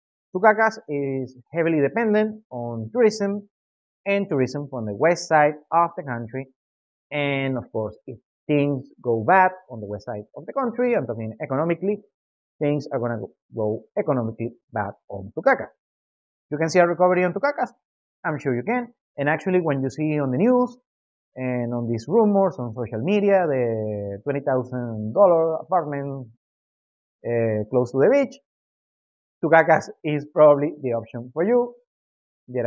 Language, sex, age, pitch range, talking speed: English, male, 30-49, 125-185 Hz, 150 wpm